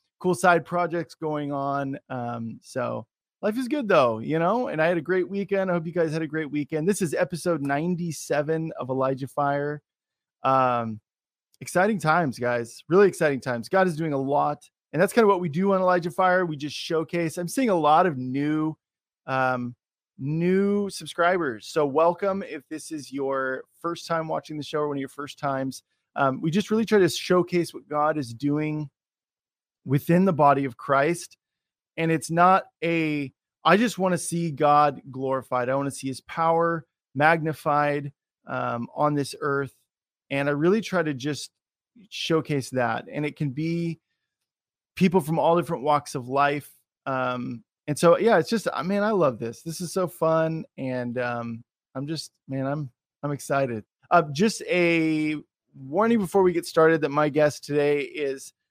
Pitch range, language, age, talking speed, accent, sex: 135-175 Hz, English, 20-39, 180 wpm, American, male